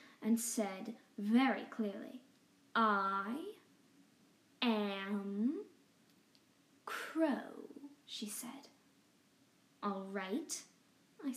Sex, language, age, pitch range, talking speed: female, English, 10-29, 215-270 Hz, 65 wpm